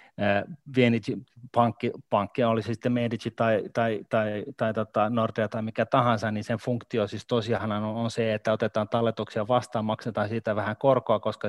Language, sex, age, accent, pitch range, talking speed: Finnish, male, 30-49, native, 110-120 Hz, 160 wpm